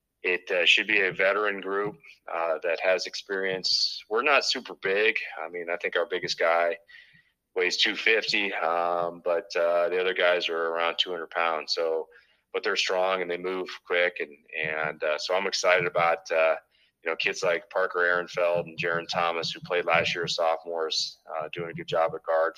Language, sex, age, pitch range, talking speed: English, male, 20-39, 80-95 Hz, 195 wpm